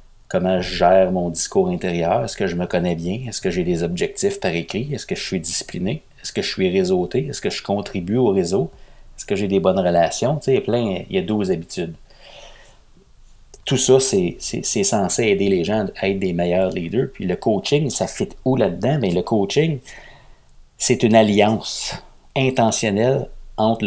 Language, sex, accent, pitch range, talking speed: French, male, Canadian, 95-130 Hz, 195 wpm